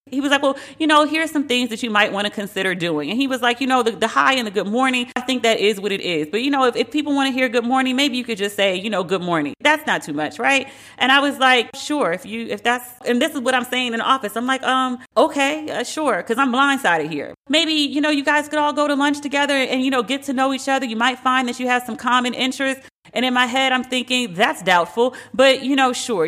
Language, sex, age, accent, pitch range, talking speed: English, female, 40-59, American, 200-265 Hz, 295 wpm